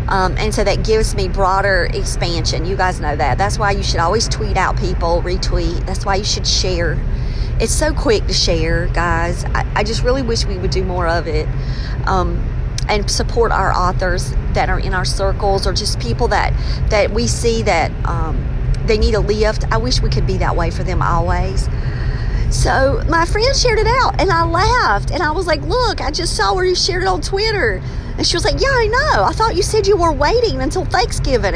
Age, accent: 40-59, American